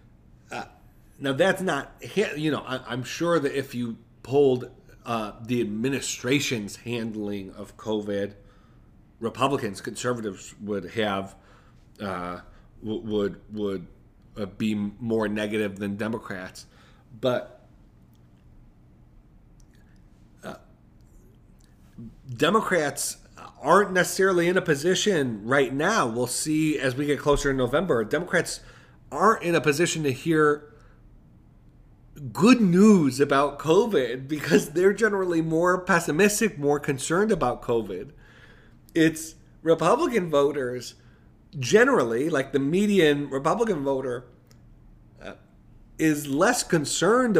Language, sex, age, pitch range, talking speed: English, male, 40-59, 115-165 Hz, 105 wpm